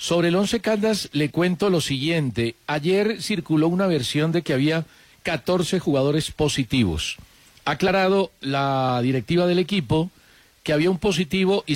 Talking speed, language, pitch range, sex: 150 wpm, Spanish, 140-180 Hz, male